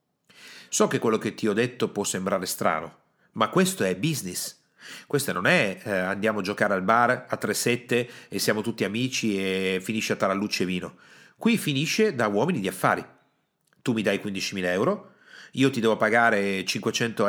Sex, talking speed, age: male, 175 wpm, 40-59